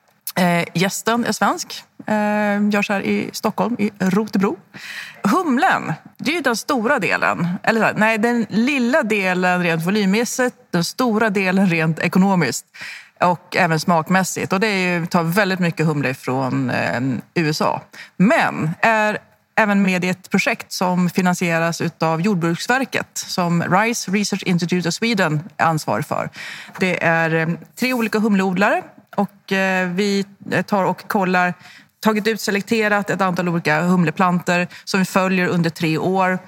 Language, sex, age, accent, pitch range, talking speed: Swedish, female, 30-49, native, 165-210 Hz, 135 wpm